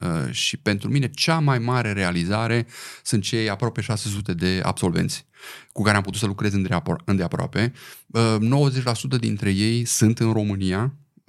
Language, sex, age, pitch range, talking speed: Romanian, male, 30-49, 95-130 Hz, 150 wpm